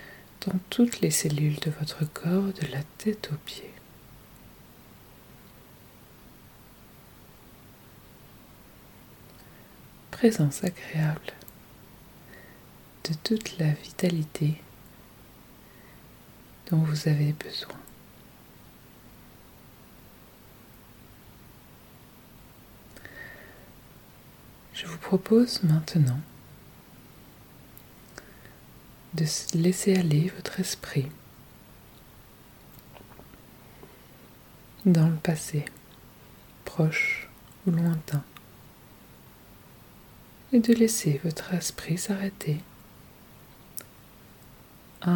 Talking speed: 60 wpm